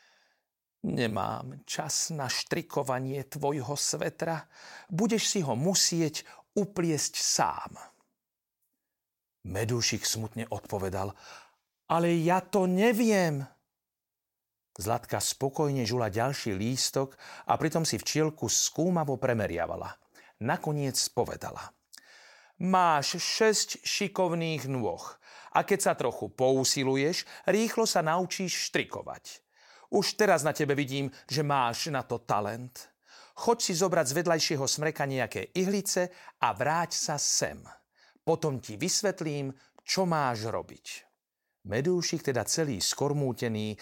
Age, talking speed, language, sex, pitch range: 40-59, 105 wpm, Slovak, male, 125-175 Hz